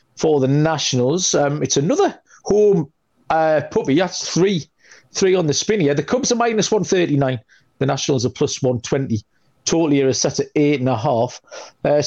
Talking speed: 180 wpm